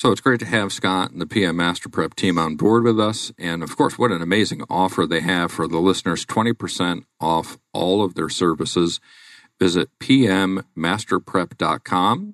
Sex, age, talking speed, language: male, 50-69, 175 wpm, English